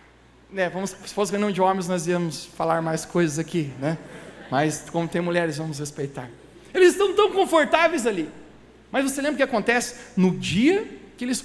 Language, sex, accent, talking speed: Portuguese, male, Brazilian, 190 wpm